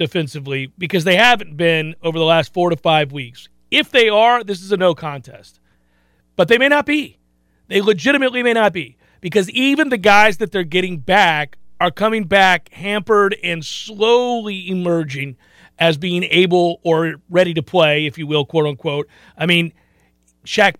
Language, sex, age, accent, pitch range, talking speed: English, male, 40-59, American, 160-205 Hz, 170 wpm